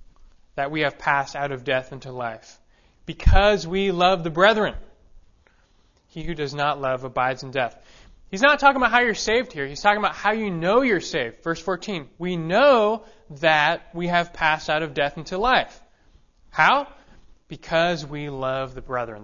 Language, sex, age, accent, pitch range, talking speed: English, male, 20-39, American, 130-185 Hz, 180 wpm